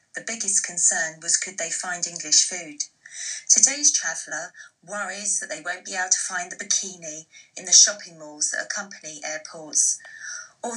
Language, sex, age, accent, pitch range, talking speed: English, female, 30-49, British, 165-235 Hz, 160 wpm